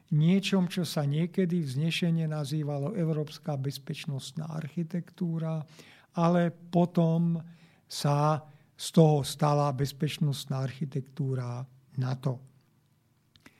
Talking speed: 80 wpm